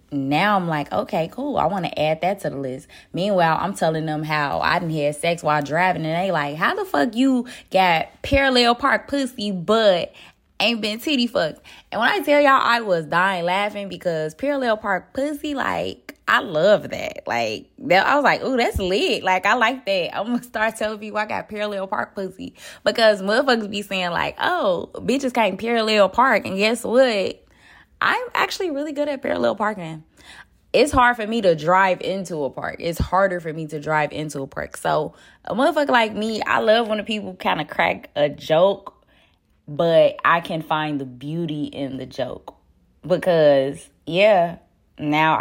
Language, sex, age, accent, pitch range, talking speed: English, female, 20-39, American, 155-240 Hz, 190 wpm